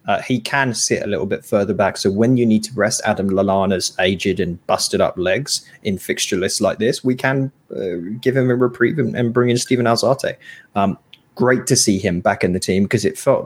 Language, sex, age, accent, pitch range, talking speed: English, male, 20-39, British, 100-135 Hz, 230 wpm